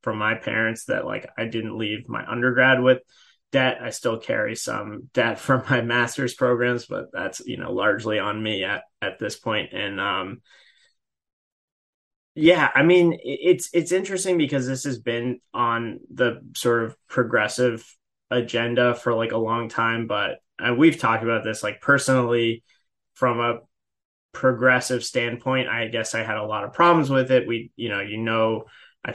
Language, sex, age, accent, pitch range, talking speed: English, male, 20-39, American, 110-130 Hz, 170 wpm